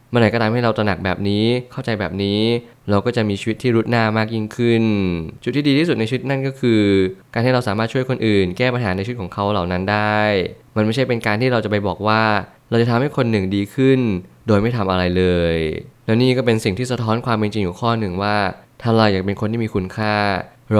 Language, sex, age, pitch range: Thai, male, 20-39, 95-115 Hz